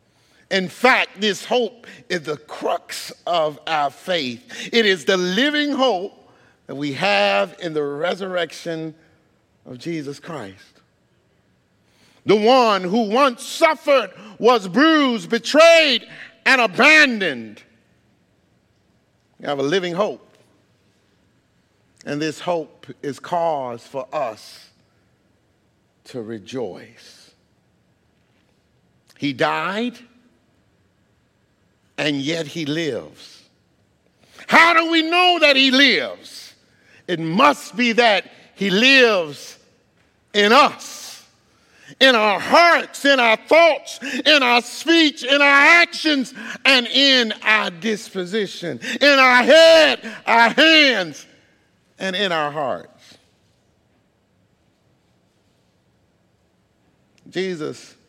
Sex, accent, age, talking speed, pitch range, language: male, American, 50-69, 100 wpm, 160-265 Hz, English